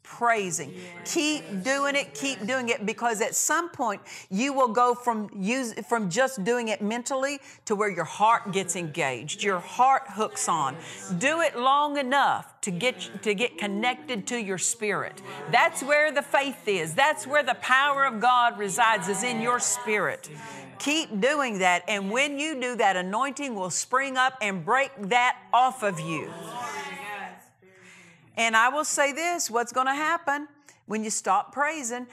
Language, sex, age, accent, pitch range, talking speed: English, female, 50-69, American, 210-280 Hz, 170 wpm